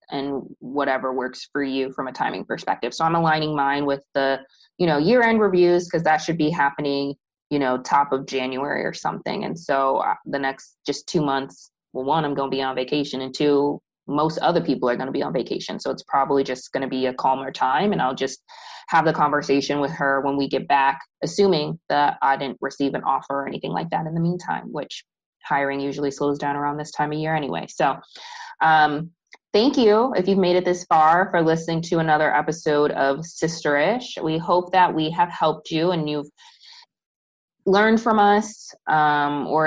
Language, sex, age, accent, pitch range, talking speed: English, female, 20-39, American, 145-185 Hz, 205 wpm